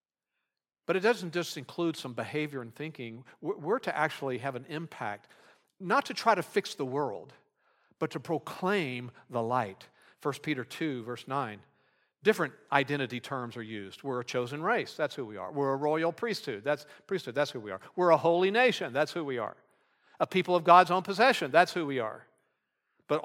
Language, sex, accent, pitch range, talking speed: English, male, American, 130-170 Hz, 190 wpm